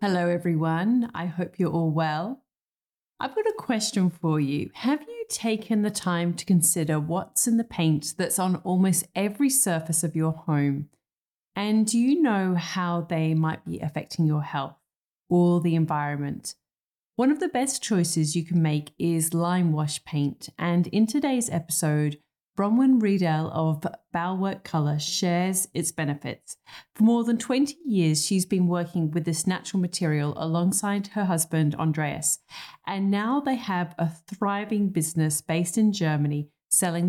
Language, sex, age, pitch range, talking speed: English, female, 30-49, 160-205 Hz, 155 wpm